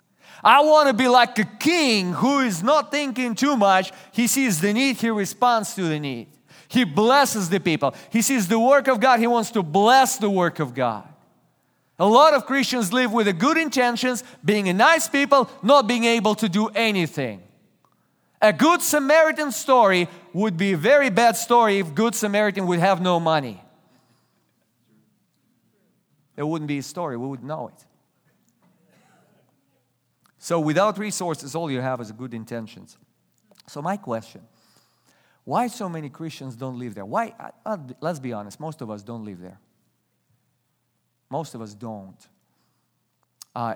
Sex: male